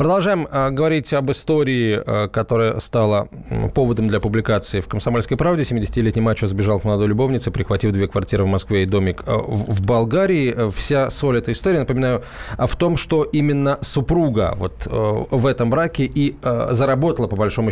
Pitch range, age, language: 110-150 Hz, 20-39, Russian